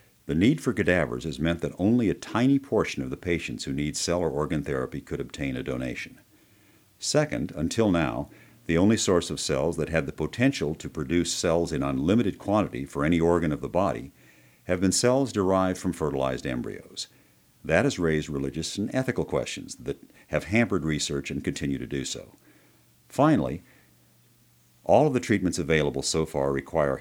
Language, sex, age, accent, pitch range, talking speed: English, male, 50-69, American, 75-105 Hz, 175 wpm